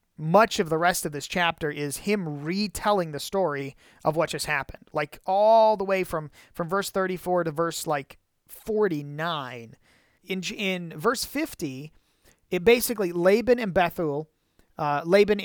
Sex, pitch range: male, 155-210 Hz